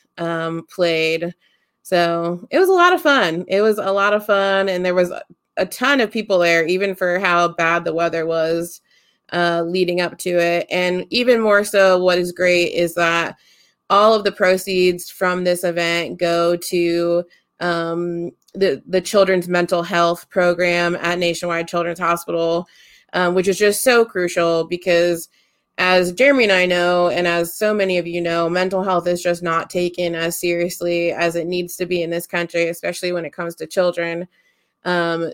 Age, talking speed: 20-39, 180 wpm